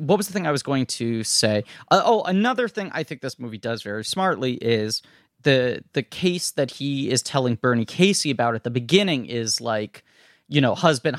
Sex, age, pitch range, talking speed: male, 30-49, 120-170 Hz, 210 wpm